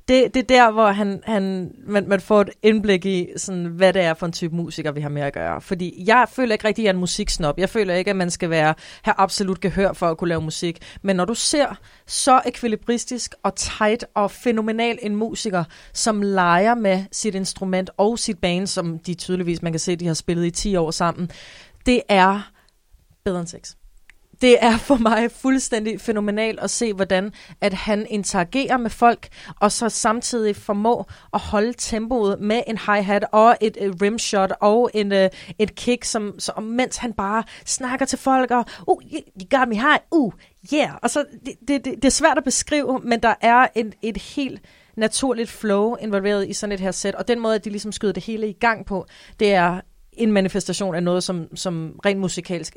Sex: female